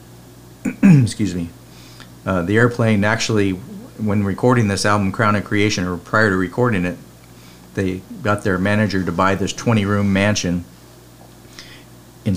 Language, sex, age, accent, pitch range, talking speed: English, male, 50-69, American, 90-105 Hz, 135 wpm